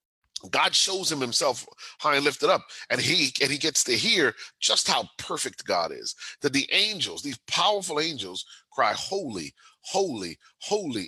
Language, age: English, 40-59